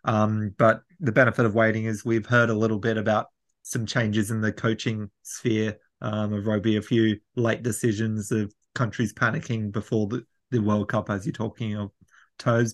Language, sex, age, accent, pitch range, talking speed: English, male, 20-39, Australian, 105-120 Hz, 185 wpm